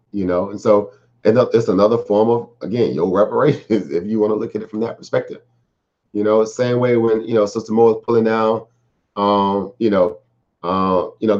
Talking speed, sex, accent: 205 wpm, male, American